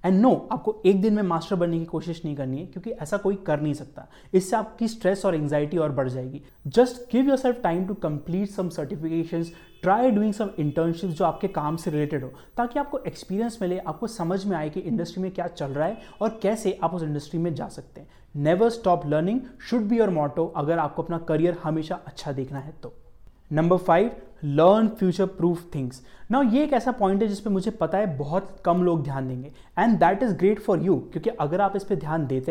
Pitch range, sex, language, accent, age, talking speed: 155-205 Hz, male, English, Indian, 20-39, 185 wpm